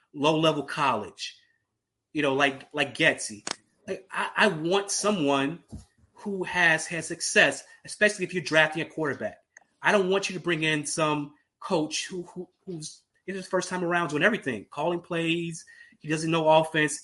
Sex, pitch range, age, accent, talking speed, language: male, 150-200 Hz, 20-39, American, 165 wpm, English